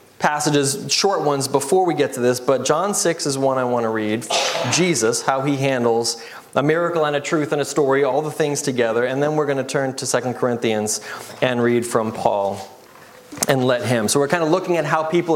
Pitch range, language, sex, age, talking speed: 135-220 Hz, English, male, 20-39, 225 wpm